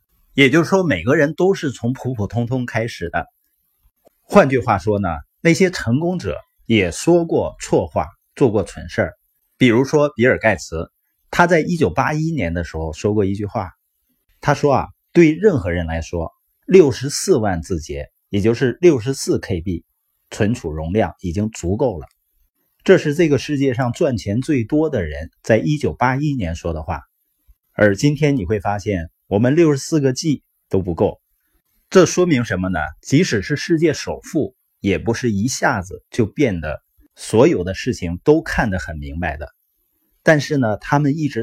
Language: Chinese